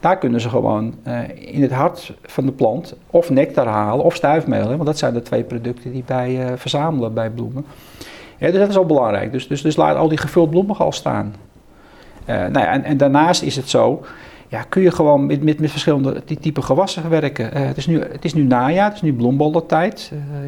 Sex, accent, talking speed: male, Dutch, 220 wpm